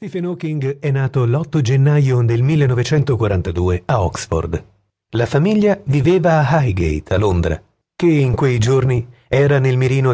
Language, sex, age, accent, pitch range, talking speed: Italian, male, 40-59, native, 110-150 Hz, 140 wpm